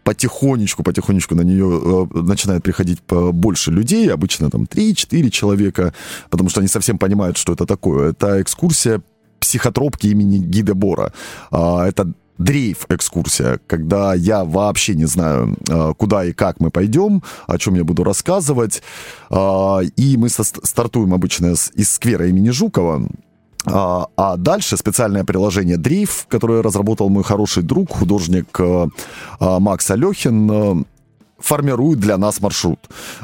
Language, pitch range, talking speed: Russian, 90-120 Hz, 125 wpm